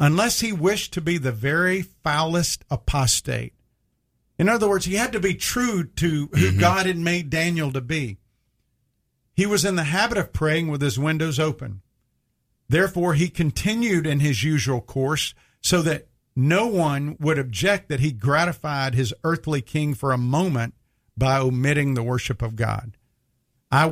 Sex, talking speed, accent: male, 165 wpm, American